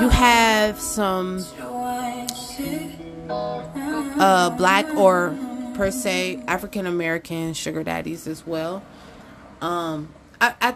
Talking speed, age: 90 wpm, 20-39